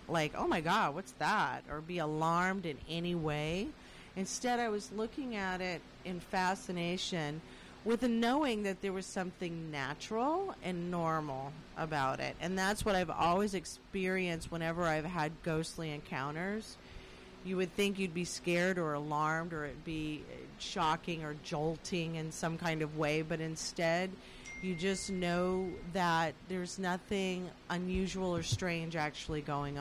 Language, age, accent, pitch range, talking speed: English, 40-59, American, 155-195 Hz, 150 wpm